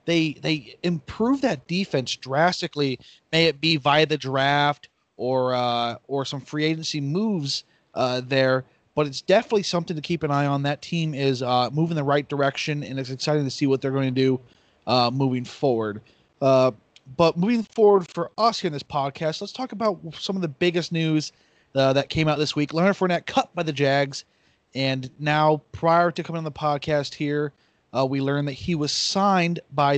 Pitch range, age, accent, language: 135-165 Hz, 30-49, American, English